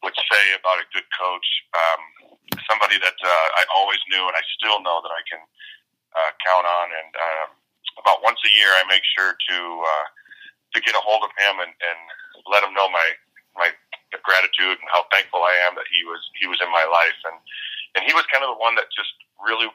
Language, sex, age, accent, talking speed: English, male, 30-49, American, 220 wpm